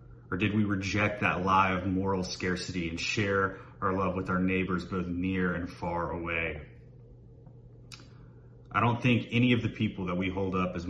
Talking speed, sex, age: 180 wpm, male, 30-49